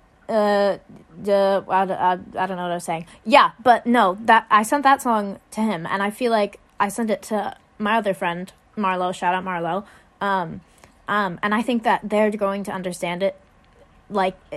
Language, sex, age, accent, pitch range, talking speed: English, female, 20-39, American, 180-220 Hz, 200 wpm